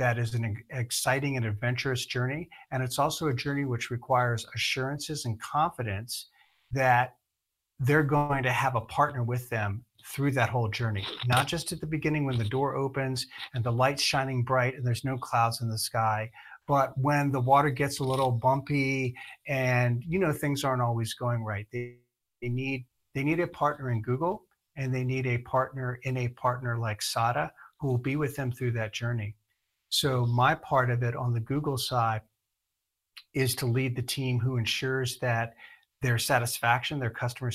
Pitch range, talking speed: 115-140 Hz, 185 wpm